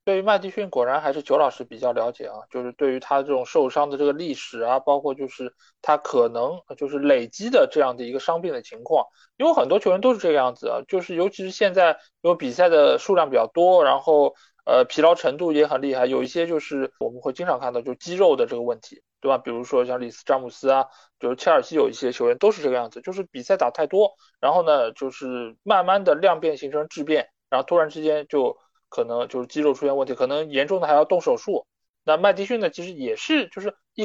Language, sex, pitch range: Chinese, male, 135-215 Hz